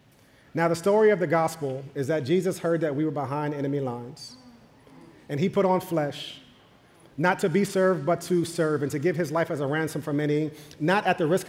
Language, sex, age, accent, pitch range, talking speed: English, male, 40-59, American, 135-170 Hz, 220 wpm